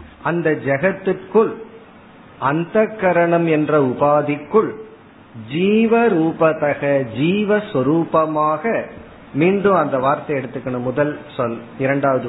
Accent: native